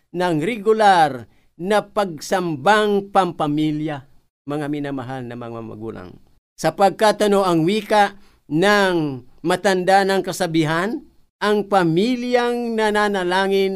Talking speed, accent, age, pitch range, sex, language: 90 wpm, native, 50-69, 125-205 Hz, male, Filipino